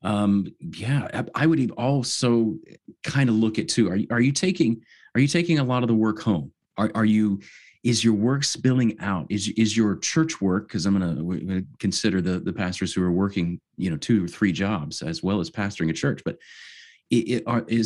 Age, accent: 30-49, American